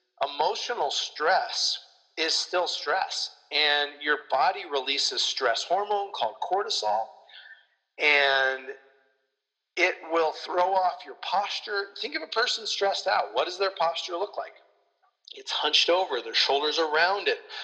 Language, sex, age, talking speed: English, male, 40-59, 135 wpm